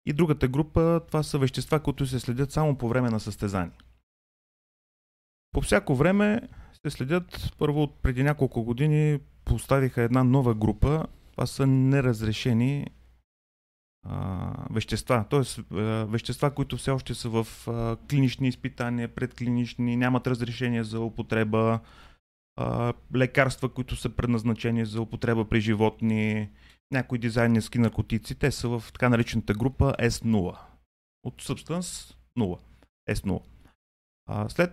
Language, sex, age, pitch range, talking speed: Bulgarian, male, 30-49, 105-135 Hz, 125 wpm